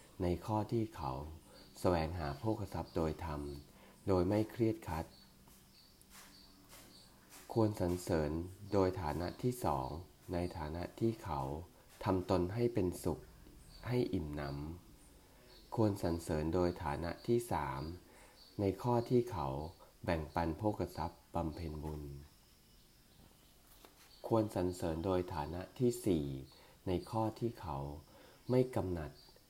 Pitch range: 75-100 Hz